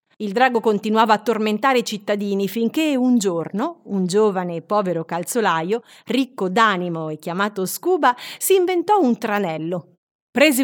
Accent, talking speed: native, 140 wpm